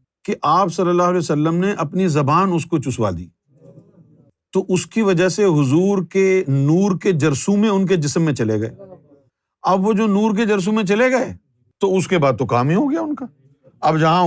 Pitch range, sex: 135-185 Hz, male